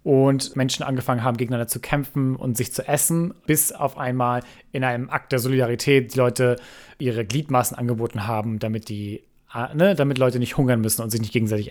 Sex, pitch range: male, 120-140 Hz